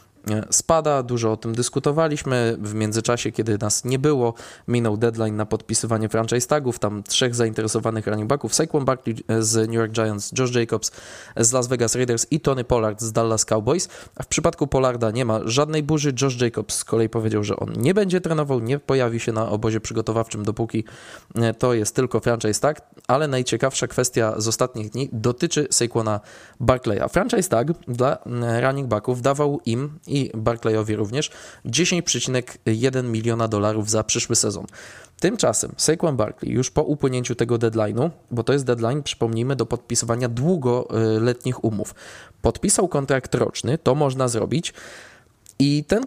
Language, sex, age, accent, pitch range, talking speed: Polish, male, 20-39, native, 110-135 Hz, 160 wpm